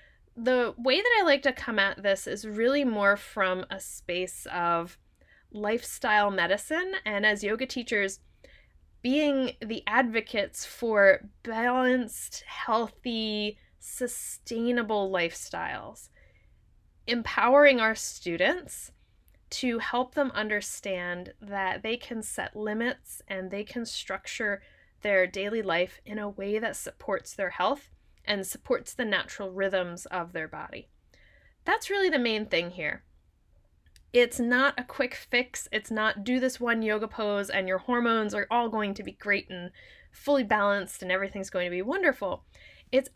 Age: 20-39